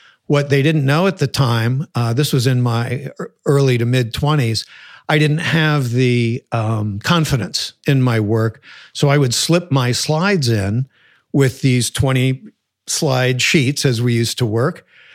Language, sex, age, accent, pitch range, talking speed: English, male, 50-69, American, 120-140 Hz, 165 wpm